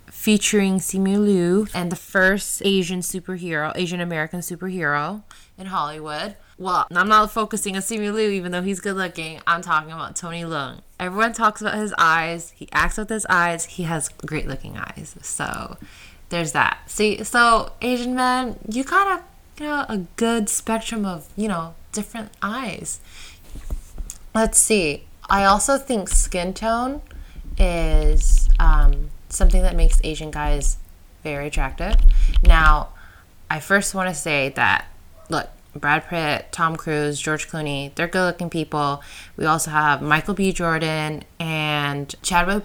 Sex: female